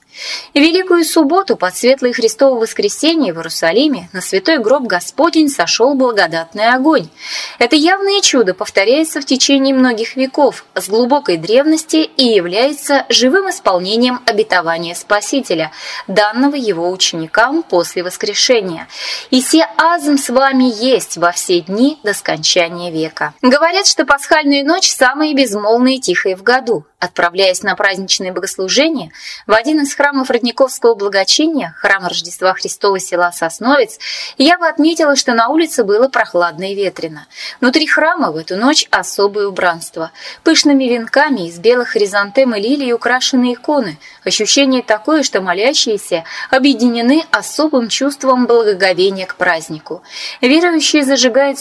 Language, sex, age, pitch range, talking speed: Russian, female, 20-39, 190-285 Hz, 130 wpm